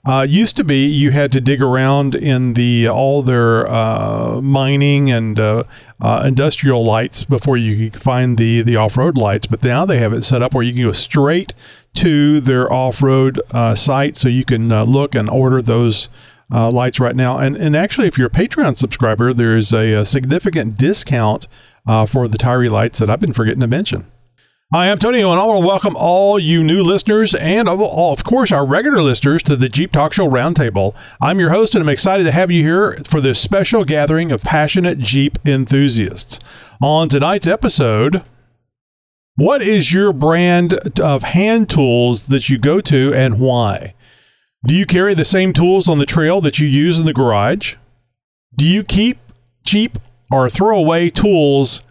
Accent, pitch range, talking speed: American, 120-165 Hz, 190 wpm